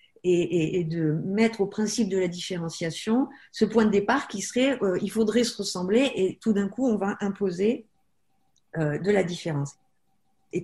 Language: French